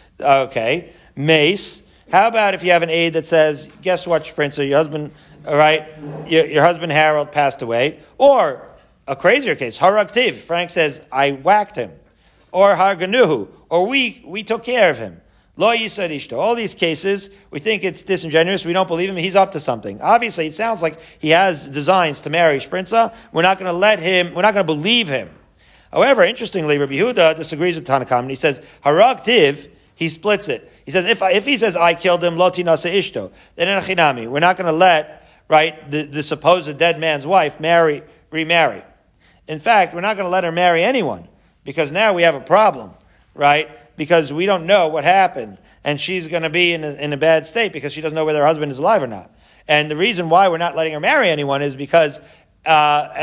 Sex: male